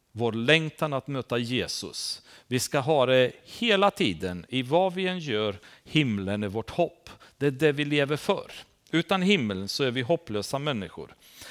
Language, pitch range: Swedish, 110-165 Hz